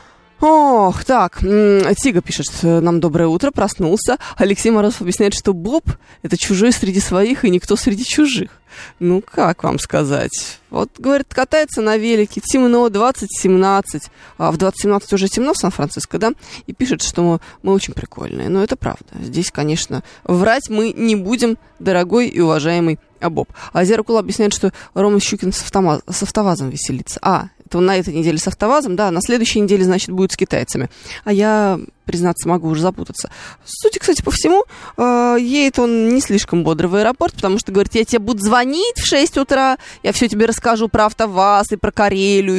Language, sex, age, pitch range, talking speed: Russian, female, 20-39, 180-235 Hz, 170 wpm